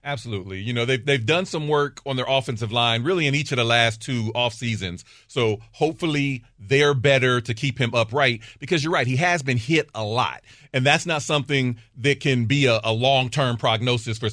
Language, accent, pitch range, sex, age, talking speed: English, American, 120-150 Hz, male, 40-59, 215 wpm